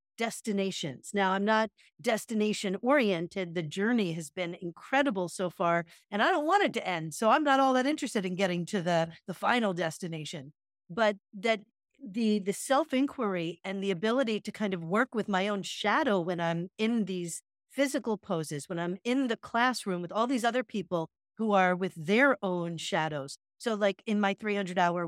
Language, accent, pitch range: English, American, 175-230 Hz